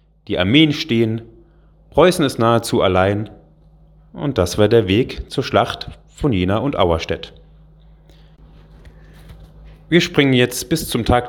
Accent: German